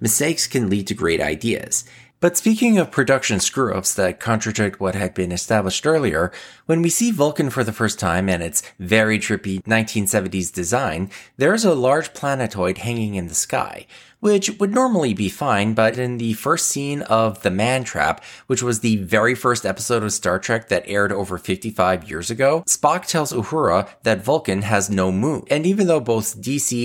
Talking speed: 185 wpm